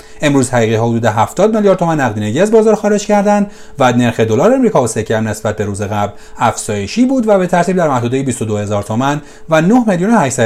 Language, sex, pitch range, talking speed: Persian, male, 110-160 Hz, 205 wpm